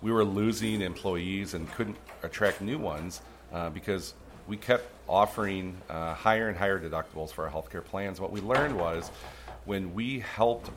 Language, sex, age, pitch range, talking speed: English, male, 40-59, 85-110 Hz, 175 wpm